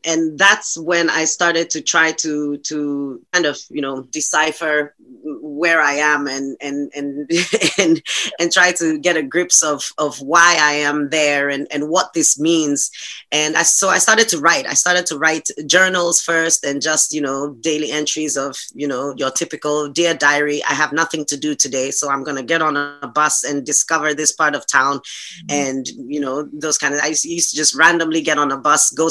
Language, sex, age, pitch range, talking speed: German, female, 20-39, 145-165 Hz, 205 wpm